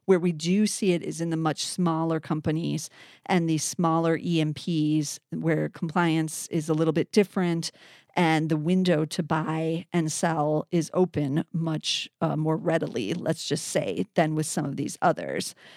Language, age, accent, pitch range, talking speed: English, 40-59, American, 160-185 Hz, 165 wpm